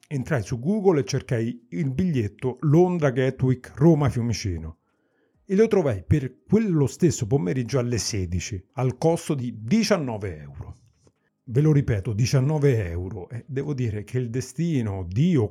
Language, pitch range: Italian, 115-155 Hz